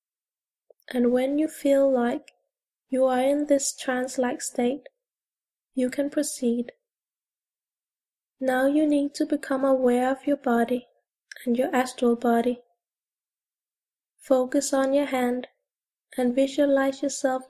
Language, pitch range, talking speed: English, 250-285 Hz, 115 wpm